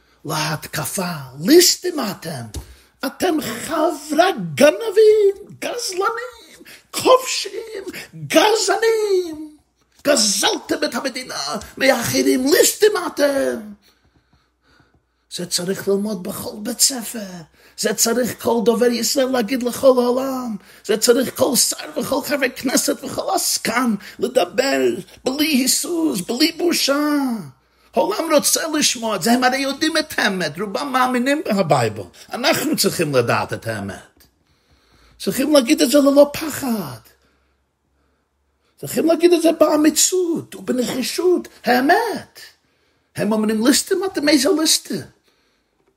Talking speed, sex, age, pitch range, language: 105 wpm, male, 40-59, 200-310 Hz, Hebrew